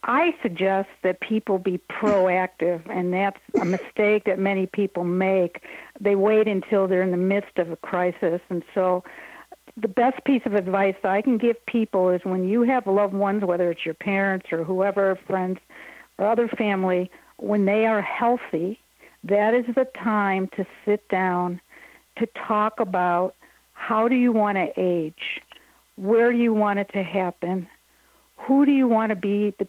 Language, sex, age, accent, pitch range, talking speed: English, female, 60-79, American, 185-220 Hz, 170 wpm